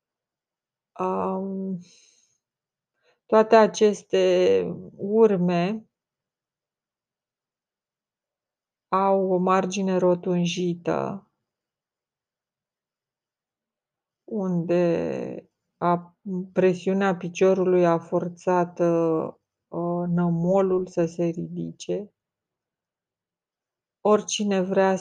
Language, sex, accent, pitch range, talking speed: Romanian, female, native, 170-185 Hz, 45 wpm